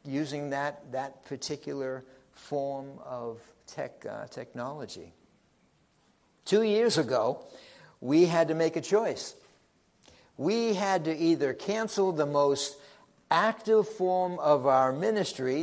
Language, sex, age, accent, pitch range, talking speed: English, male, 60-79, American, 140-220 Hz, 115 wpm